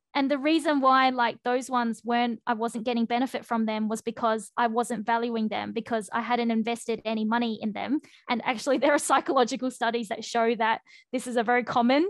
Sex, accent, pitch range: female, Australian, 225-250 Hz